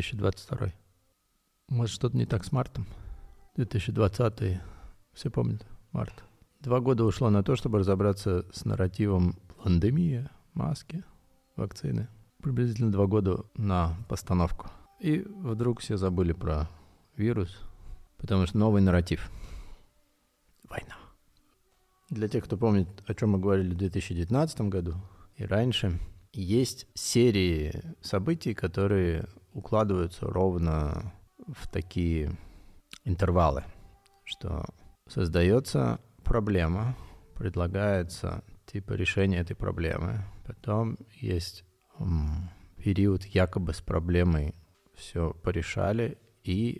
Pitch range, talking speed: 85-110 Hz, 100 wpm